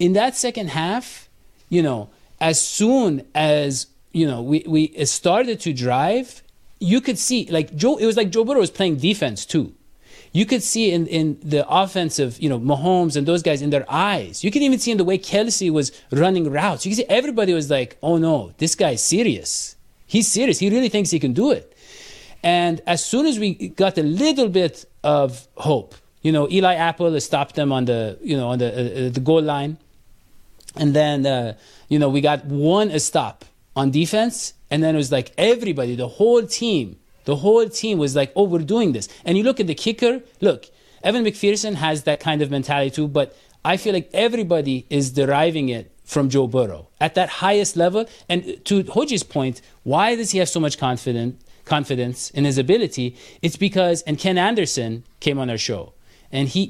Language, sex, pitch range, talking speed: English, male, 140-200 Hz, 200 wpm